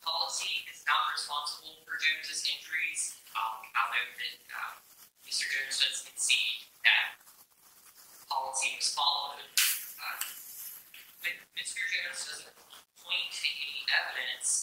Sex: male